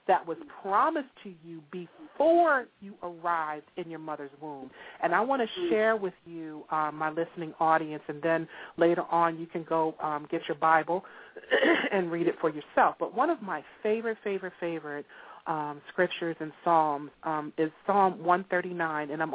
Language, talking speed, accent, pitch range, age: English, 175 wpm, American, 160-205 Hz, 40-59